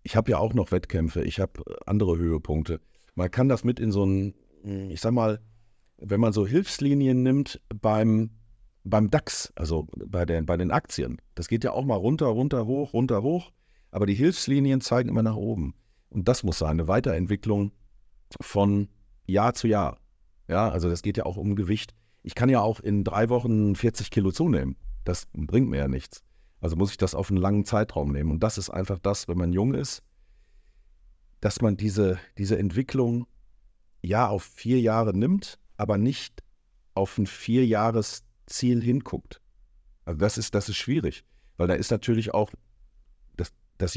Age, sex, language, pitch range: 50-69, male, German, 90-115 Hz